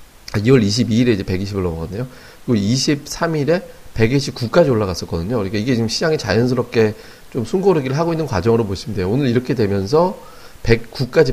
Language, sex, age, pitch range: Korean, male, 40-59, 100-135 Hz